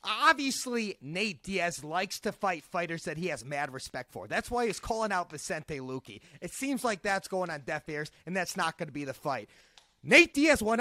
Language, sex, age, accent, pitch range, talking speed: English, male, 30-49, American, 190-300 Hz, 215 wpm